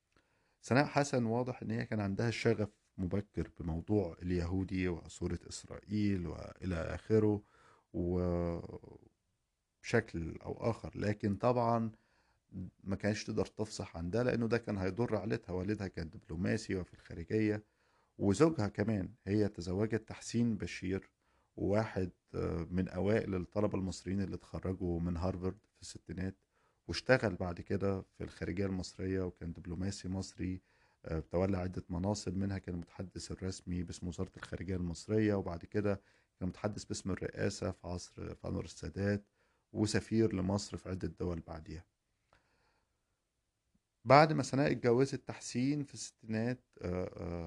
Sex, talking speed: male, 120 wpm